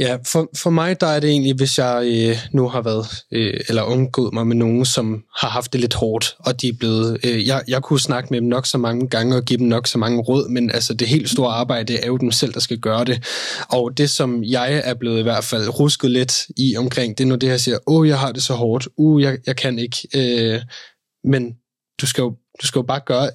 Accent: native